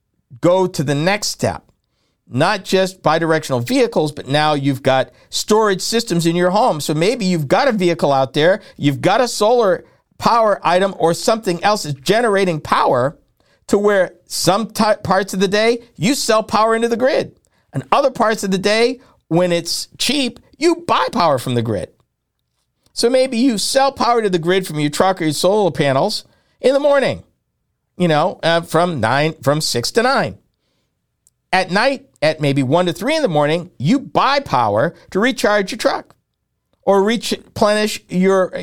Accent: American